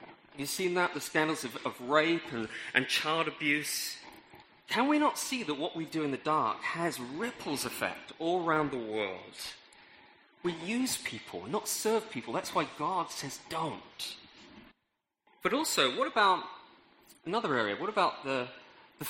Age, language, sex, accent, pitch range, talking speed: 30-49, English, male, British, 145-215 Hz, 165 wpm